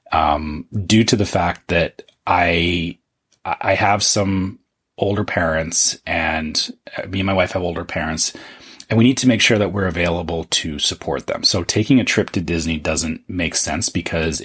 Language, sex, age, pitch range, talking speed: English, male, 30-49, 85-100 Hz, 175 wpm